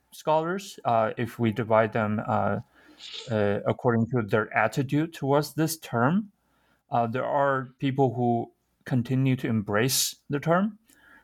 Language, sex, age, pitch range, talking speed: English, male, 30-49, 115-140 Hz, 135 wpm